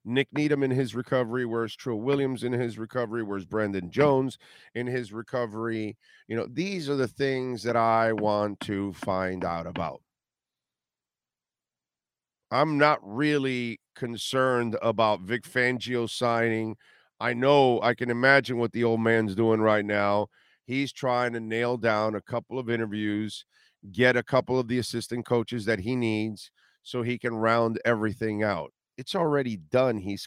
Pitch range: 110-125 Hz